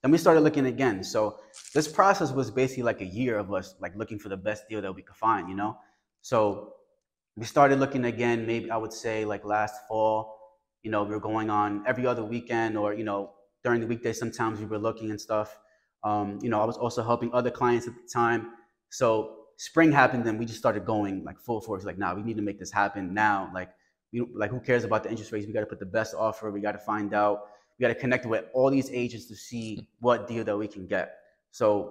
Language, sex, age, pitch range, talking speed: English, male, 20-39, 105-120 Hz, 245 wpm